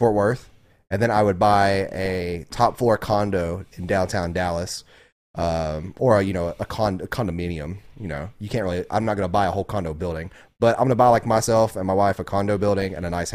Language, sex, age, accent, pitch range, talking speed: English, male, 30-49, American, 95-115 Hz, 230 wpm